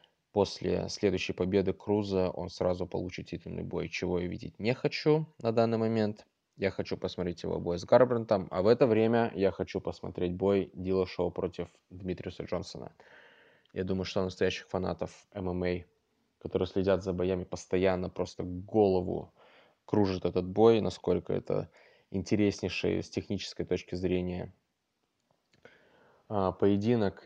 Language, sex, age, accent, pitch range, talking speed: Russian, male, 20-39, native, 90-105 Hz, 135 wpm